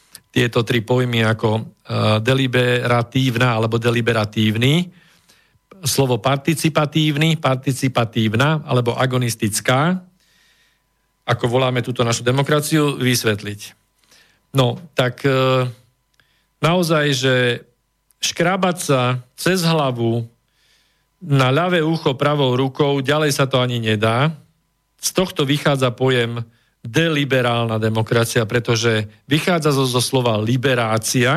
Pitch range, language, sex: 115-150 Hz, Slovak, male